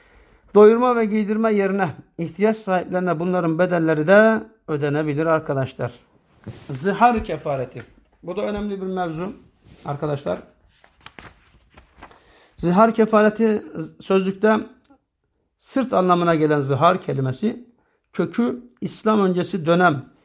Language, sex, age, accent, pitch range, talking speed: Turkish, male, 60-79, native, 155-195 Hz, 90 wpm